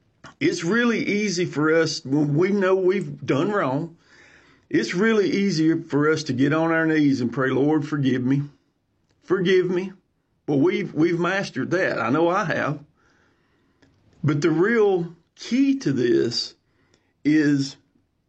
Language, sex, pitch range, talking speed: English, male, 145-195 Hz, 150 wpm